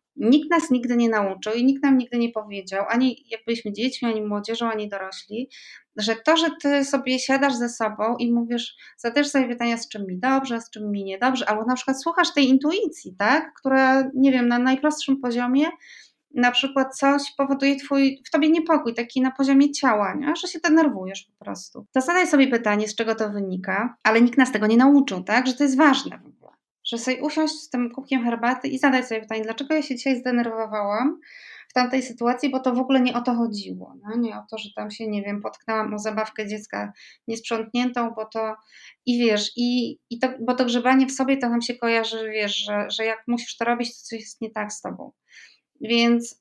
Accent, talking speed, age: native, 215 wpm, 20-39